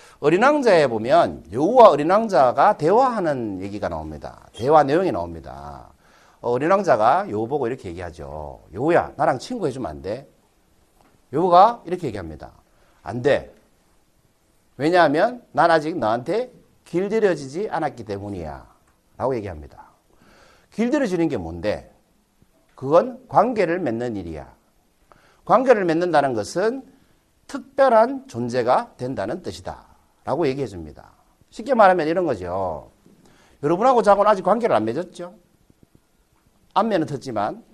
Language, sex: Korean, male